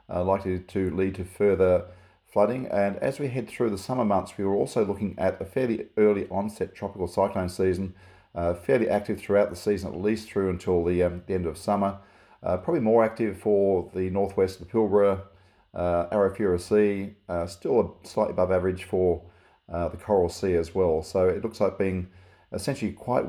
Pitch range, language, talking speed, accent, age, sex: 90-105 Hz, English, 195 wpm, Australian, 40-59, male